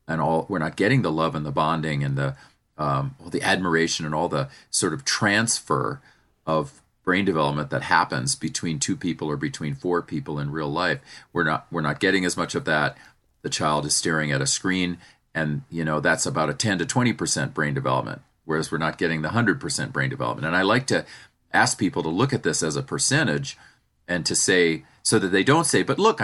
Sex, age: male, 40-59